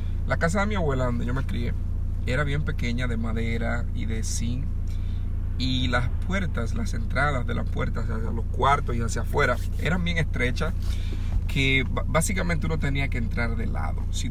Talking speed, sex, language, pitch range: 190 wpm, male, Spanish, 80-110 Hz